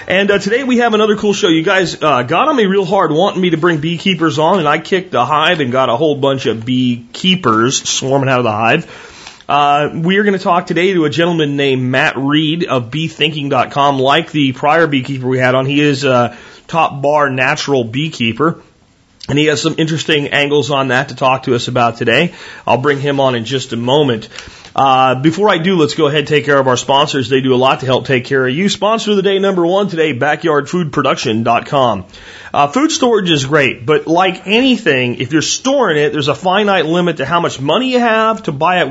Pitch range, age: 135-180 Hz, 30-49